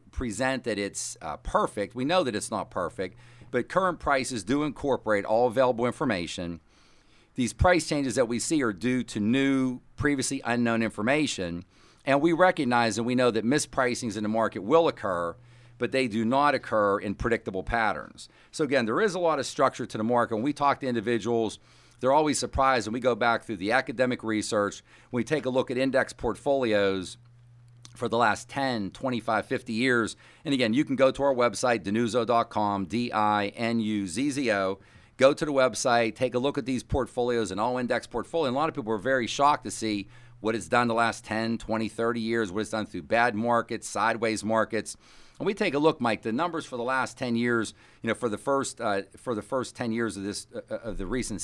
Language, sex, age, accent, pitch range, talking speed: English, male, 50-69, American, 110-130 Hz, 205 wpm